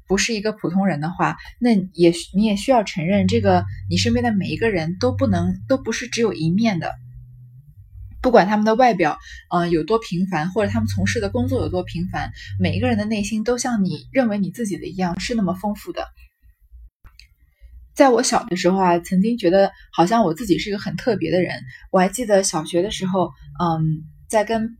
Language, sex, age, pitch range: Chinese, female, 20-39, 170-230 Hz